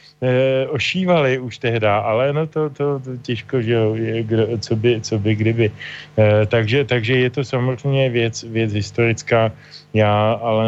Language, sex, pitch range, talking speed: Slovak, male, 105-120 Hz, 165 wpm